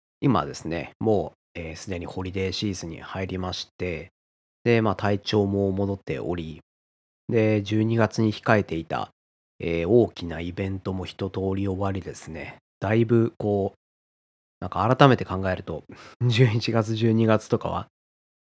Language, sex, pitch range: Japanese, male, 85-115 Hz